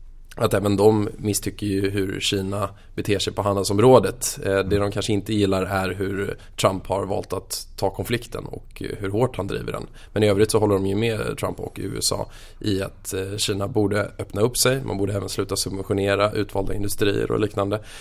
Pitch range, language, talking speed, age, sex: 100-110 Hz, Swedish, 190 wpm, 20-39, male